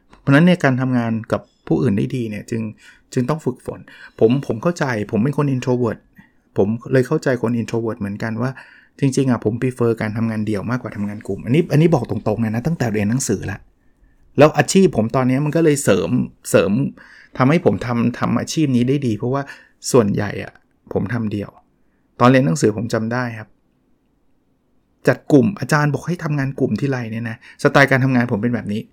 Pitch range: 115-145 Hz